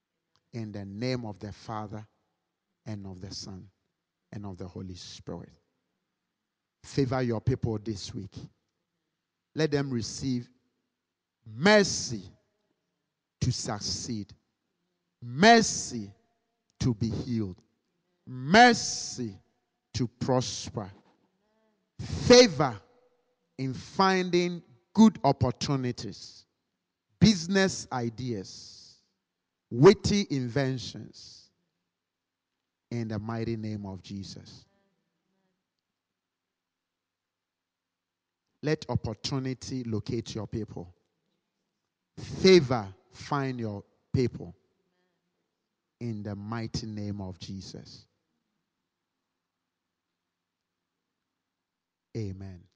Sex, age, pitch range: male, 50-69, 100-145 Hz